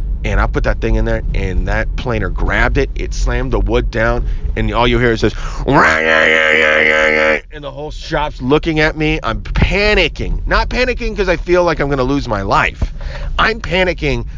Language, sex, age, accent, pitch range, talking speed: English, male, 30-49, American, 90-140 Hz, 210 wpm